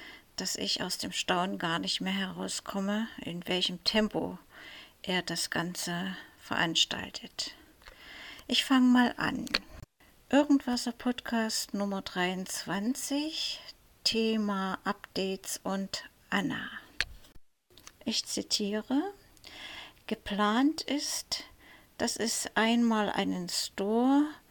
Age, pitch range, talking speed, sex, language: 60-79, 205-250 Hz, 90 wpm, female, German